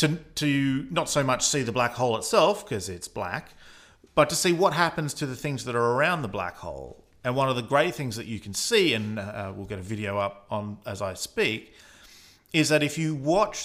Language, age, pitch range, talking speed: English, 40-59, 105-140 Hz, 230 wpm